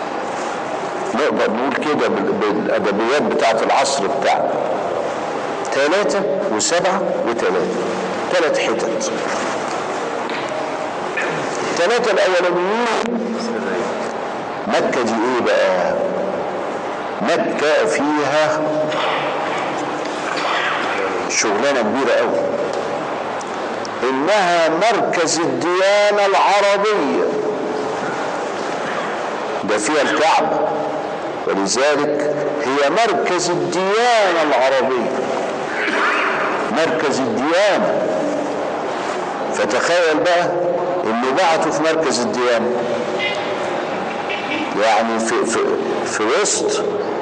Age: 60-79